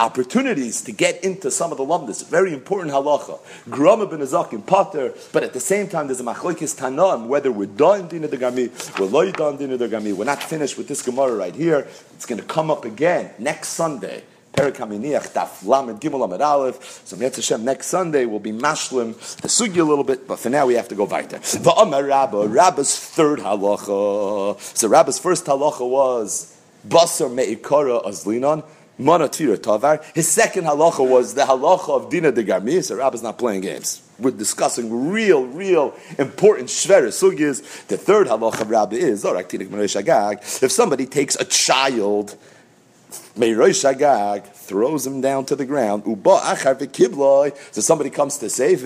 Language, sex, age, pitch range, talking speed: English, male, 40-59, 125-165 Hz, 145 wpm